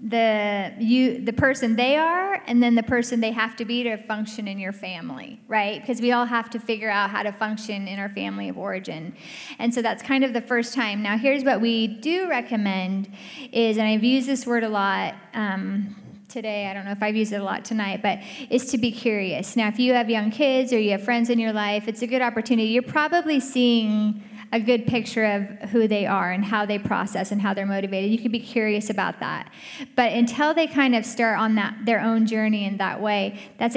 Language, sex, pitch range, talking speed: English, female, 210-240 Hz, 230 wpm